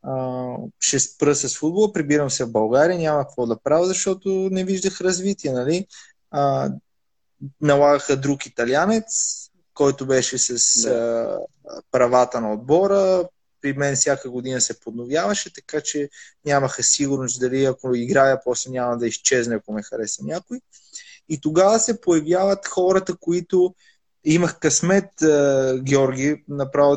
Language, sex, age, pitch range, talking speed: Bulgarian, male, 20-39, 130-170 Hz, 135 wpm